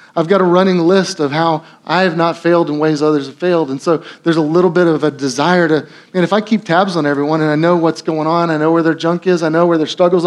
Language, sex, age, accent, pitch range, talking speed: English, male, 30-49, American, 150-180 Hz, 290 wpm